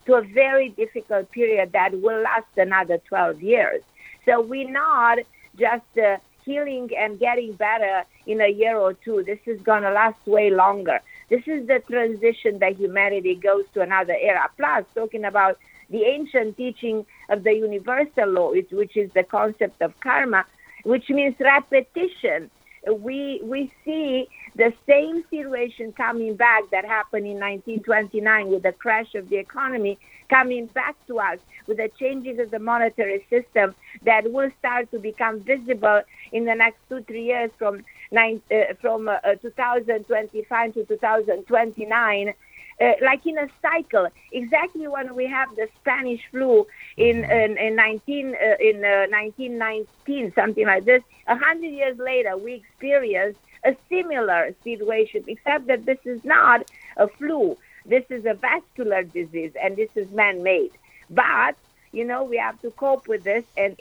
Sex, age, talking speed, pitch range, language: female, 50-69, 160 wpm, 210-260 Hz, English